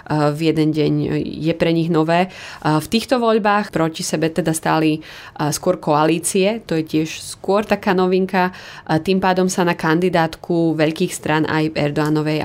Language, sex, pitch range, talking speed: Slovak, female, 155-180 Hz, 150 wpm